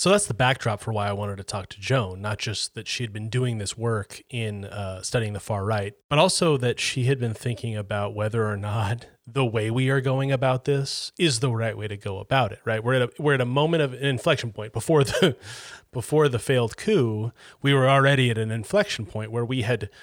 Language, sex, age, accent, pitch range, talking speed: English, male, 30-49, American, 105-130 Hz, 245 wpm